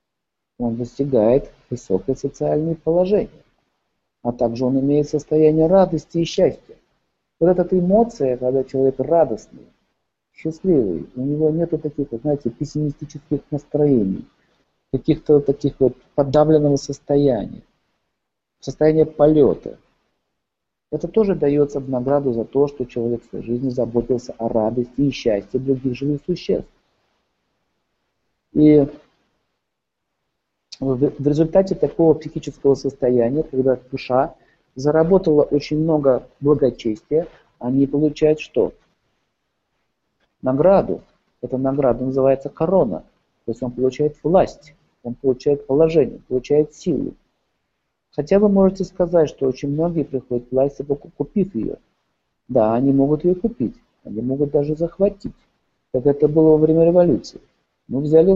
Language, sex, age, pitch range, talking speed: Russian, male, 50-69, 130-155 Hz, 115 wpm